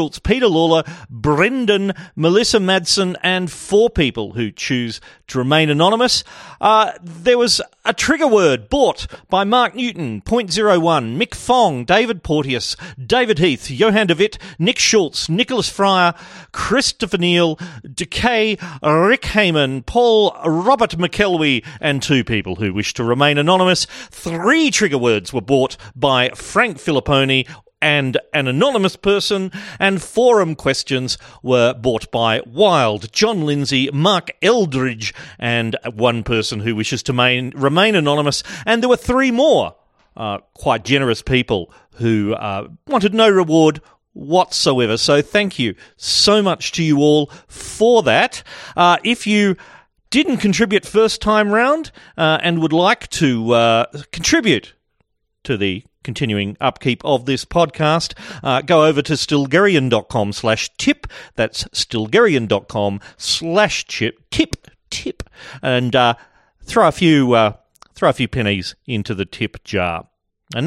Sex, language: male, English